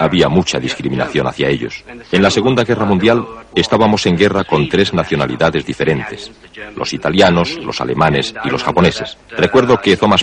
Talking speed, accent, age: 160 wpm, Spanish, 40-59